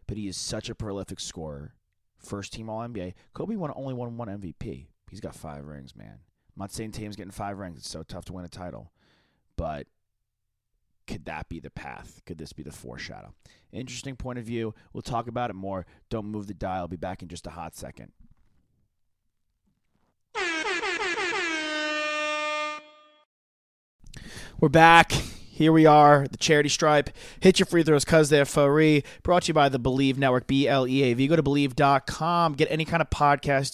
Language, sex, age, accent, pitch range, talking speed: English, male, 30-49, American, 110-145 Hz, 175 wpm